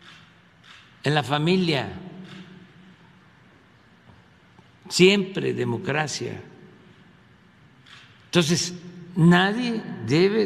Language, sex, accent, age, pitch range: Spanish, male, Mexican, 60-79, 145-185 Hz